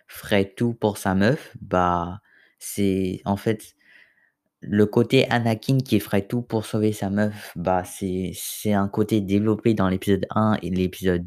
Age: 20-39